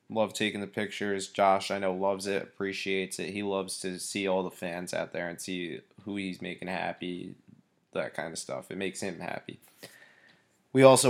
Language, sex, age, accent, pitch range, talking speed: English, male, 20-39, American, 100-120 Hz, 195 wpm